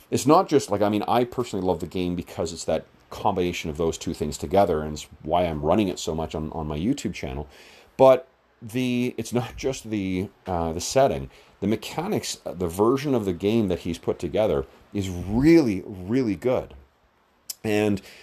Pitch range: 80-110 Hz